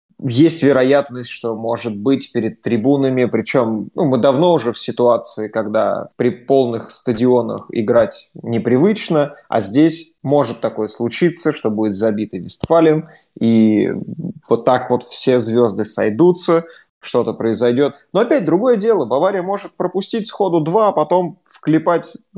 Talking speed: 135 wpm